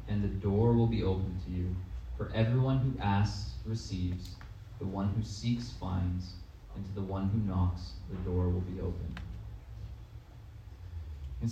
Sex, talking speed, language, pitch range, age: male, 155 wpm, English, 90-105 Hz, 20-39